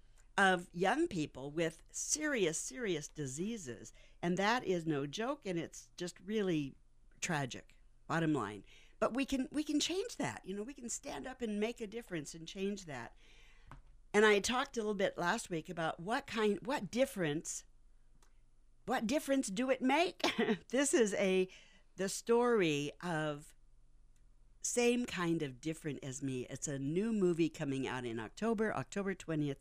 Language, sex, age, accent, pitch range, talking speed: English, female, 60-79, American, 140-210 Hz, 160 wpm